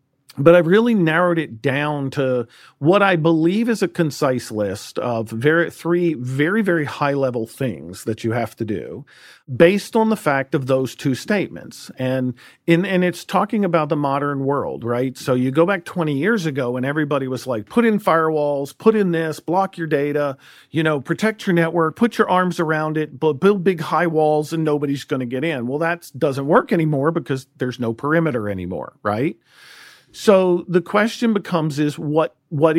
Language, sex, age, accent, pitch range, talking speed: English, male, 50-69, American, 130-170 Hz, 190 wpm